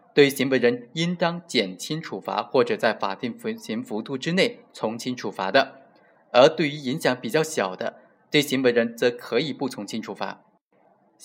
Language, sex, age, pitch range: Chinese, male, 20-39, 120-170 Hz